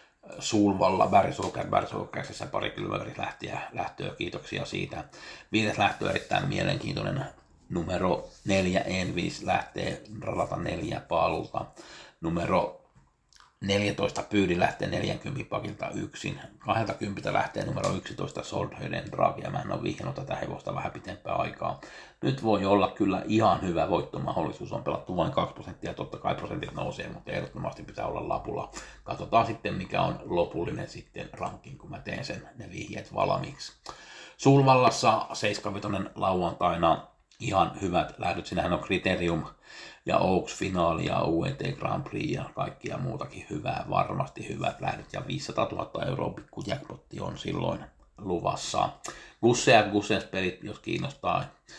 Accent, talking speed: native, 130 wpm